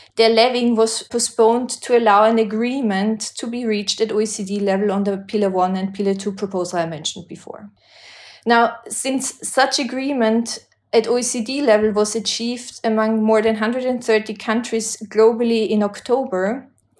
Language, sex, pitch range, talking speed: English, female, 210-245 Hz, 150 wpm